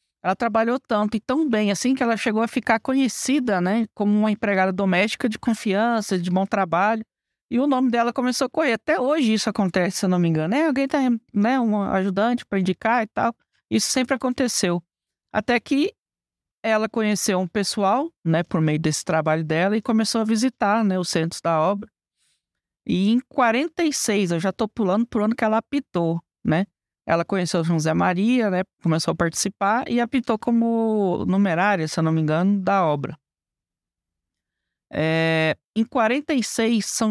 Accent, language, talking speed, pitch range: Brazilian, Portuguese, 180 wpm, 175-235 Hz